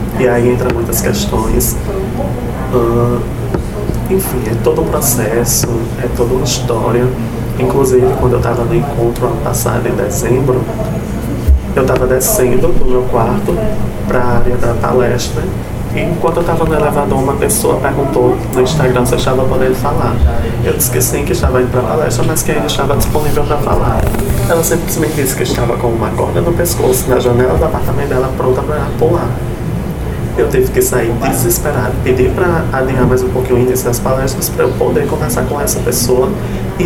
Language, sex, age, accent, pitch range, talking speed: Portuguese, male, 20-39, Brazilian, 120-130 Hz, 180 wpm